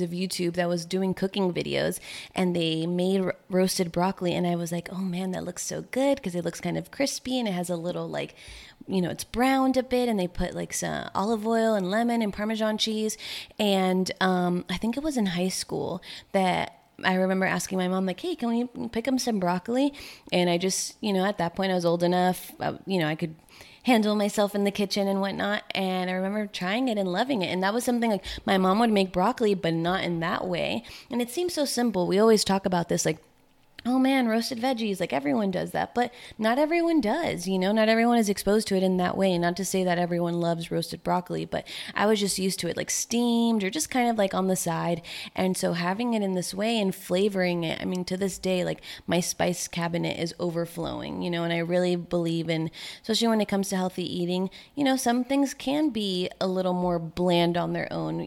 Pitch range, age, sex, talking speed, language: 175-220 Hz, 20-39, female, 235 wpm, English